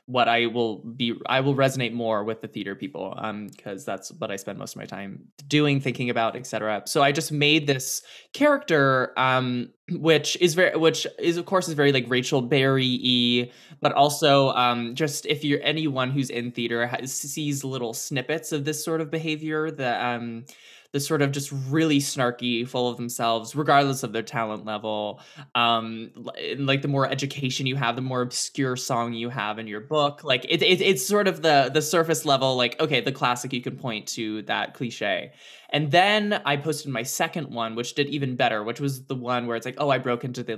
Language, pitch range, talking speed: English, 120-155 Hz, 205 wpm